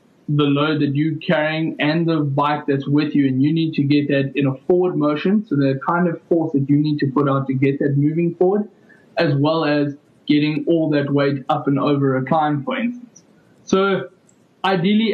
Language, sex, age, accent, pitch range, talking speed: English, male, 20-39, South African, 140-175 Hz, 210 wpm